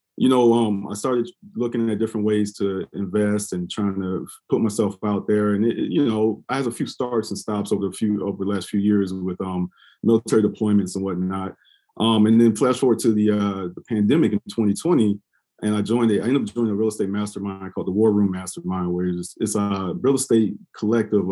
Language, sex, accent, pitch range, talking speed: English, male, American, 100-115 Hz, 225 wpm